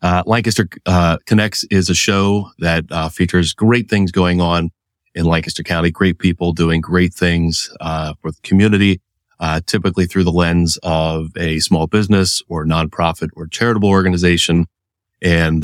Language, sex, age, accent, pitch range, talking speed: English, male, 30-49, American, 80-95 Hz, 155 wpm